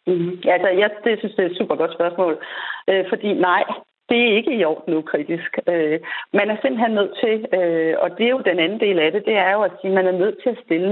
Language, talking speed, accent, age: Danish, 265 wpm, native, 40-59